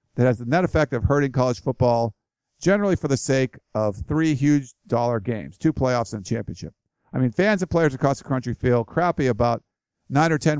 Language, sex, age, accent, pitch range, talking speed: English, male, 50-69, American, 115-140 Hz, 210 wpm